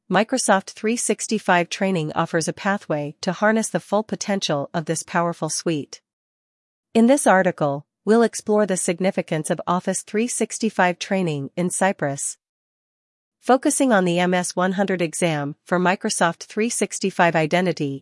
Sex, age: female, 40-59